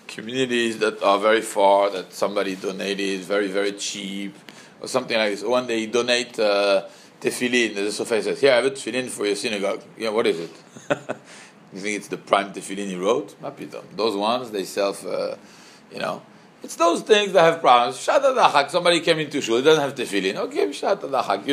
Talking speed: 195 wpm